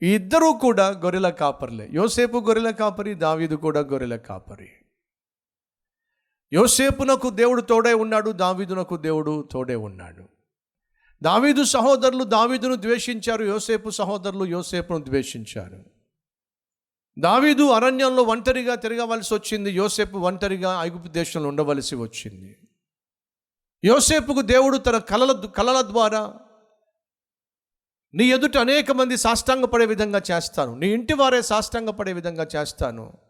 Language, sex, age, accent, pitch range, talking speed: Telugu, male, 50-69, native, 135-225 Hz, 105 wpm